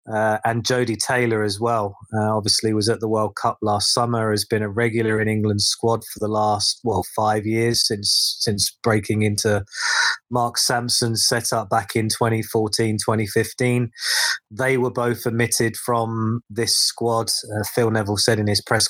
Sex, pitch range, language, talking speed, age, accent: male, 110-120 Hz, English, 170 wpm, 20-39, British